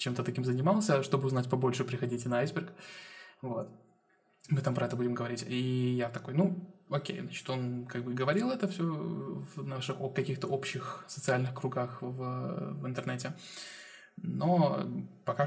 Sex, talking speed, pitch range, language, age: male, 155 wpm, 125-185 Hz, Russian, 20-39